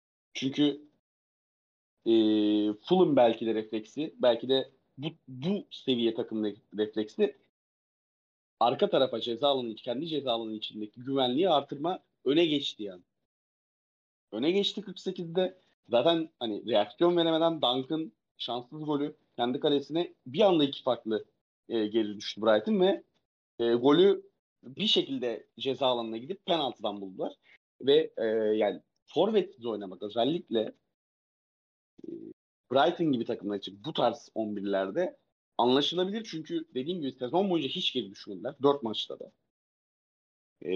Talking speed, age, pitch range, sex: 120 wpm, 40-59, 110-155 Hz, male